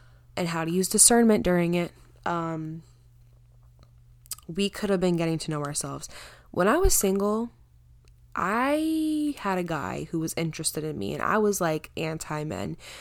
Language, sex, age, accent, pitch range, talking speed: English, female, 10-29, American, 145-195 Hz, 155 wpm